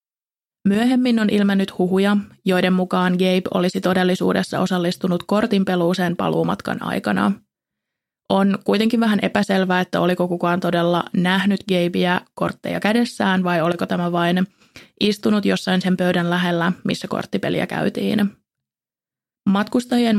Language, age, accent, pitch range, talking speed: Finnish, 20-39, native, 180-200 Hz, 115 wpm